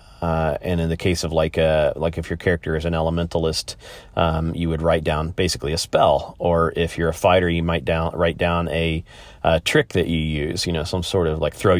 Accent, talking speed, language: American, 235 wpm, English